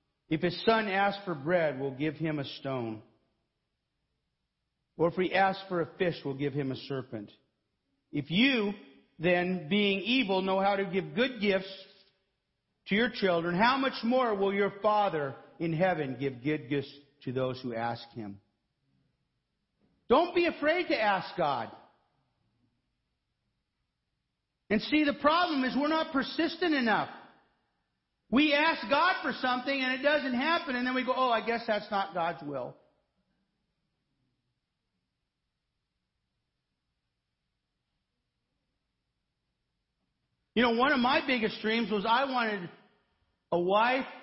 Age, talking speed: 50-69, 135 wpm